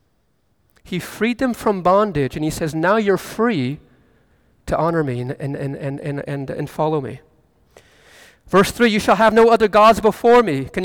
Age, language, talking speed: 40-59, English, 185 wpm